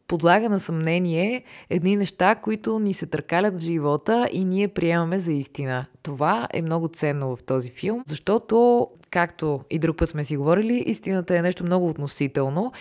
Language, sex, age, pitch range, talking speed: Bulgarian, female, 20-39, 145-190 Hz, 170 wpm